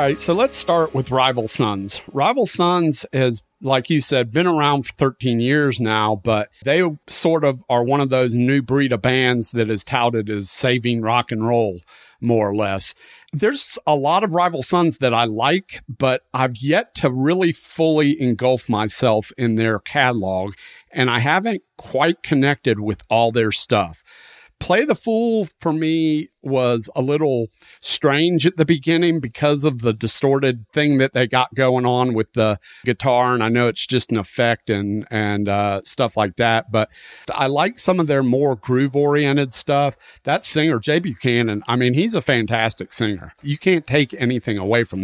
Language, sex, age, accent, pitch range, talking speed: English, male, 40-59, American, 110-145 Hz, 180 wpm